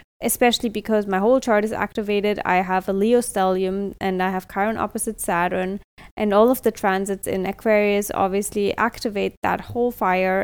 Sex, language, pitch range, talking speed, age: female, English, 220-260 Hz, 170 wpm, 20-39